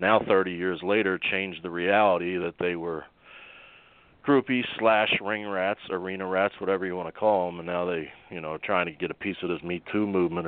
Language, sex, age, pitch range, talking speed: English, male, 40-59, 90-105 Hz, 210 wpm